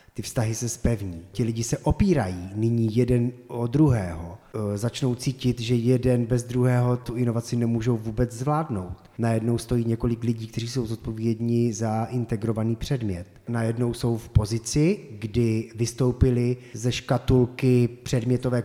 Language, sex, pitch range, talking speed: Czech, male, 115-135 Hz, 135 wpm